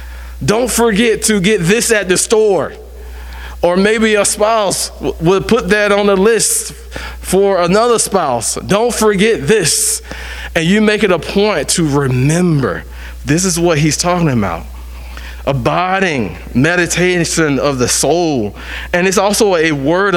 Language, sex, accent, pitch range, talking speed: English, male, American, 150-205 Hz, 145 wpm